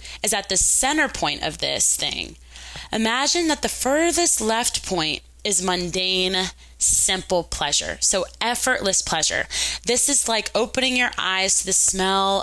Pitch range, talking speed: 165-220 Hz, 145 wpm